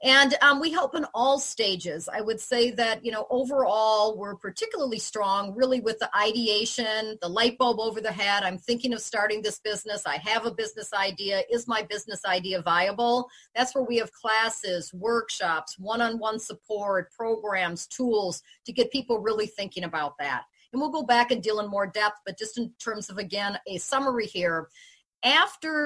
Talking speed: 185 wpm